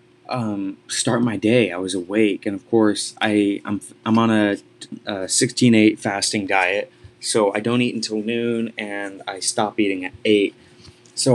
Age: 20-39